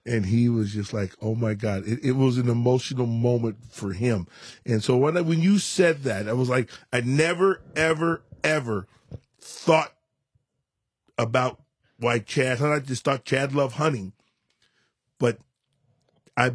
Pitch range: 110-135 Hz